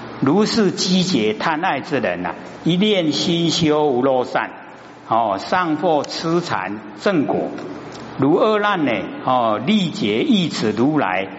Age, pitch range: 60-79, 120-175 Hz